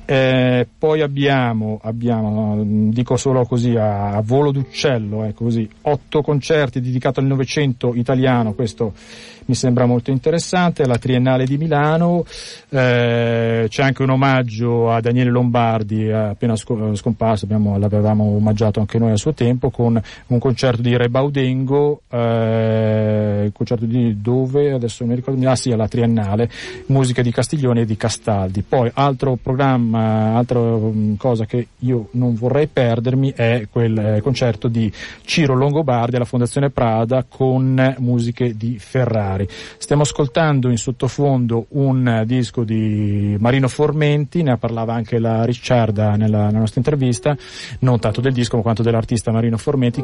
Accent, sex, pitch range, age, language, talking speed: native, male, 115-130 Hz, 40-59, Italian, 150 wpm